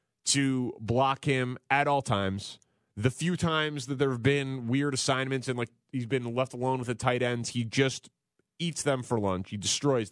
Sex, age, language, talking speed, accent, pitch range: male, 30-49, English, 195 wpm, American, 120-150 Hz